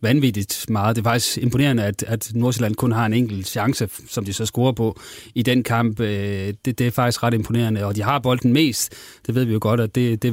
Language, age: Danish, 30-49